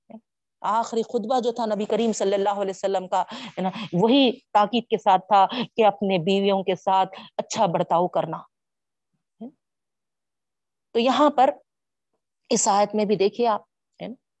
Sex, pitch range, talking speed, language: female, 180-215 Hz, 140 wpm, Urdu